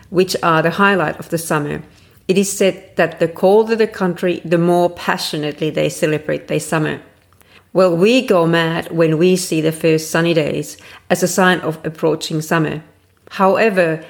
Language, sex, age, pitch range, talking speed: English, female, 40-59, 155-190 Hz, 170 wpm